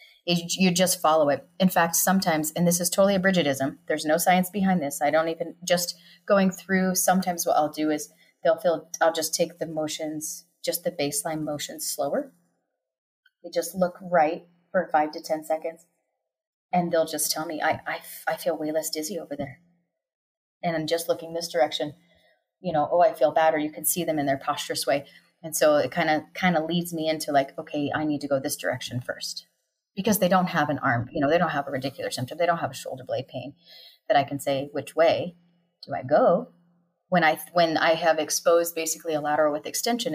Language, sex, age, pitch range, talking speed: English, female, 30-49, 150-175 Hz, 215 wpm